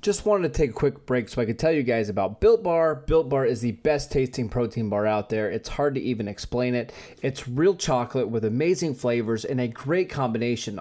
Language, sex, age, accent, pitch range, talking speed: English, male, 30-49, American, 120-145 Hz, 235 wpm